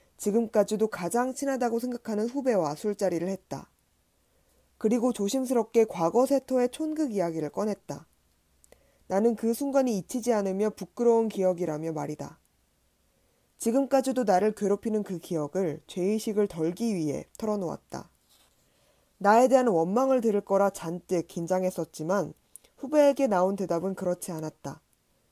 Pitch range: 170-235 Hz